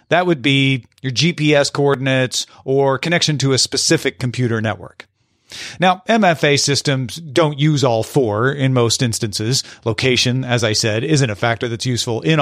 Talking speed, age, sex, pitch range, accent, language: 160 wpm, 40-59, male, 125-175 Hz, American, English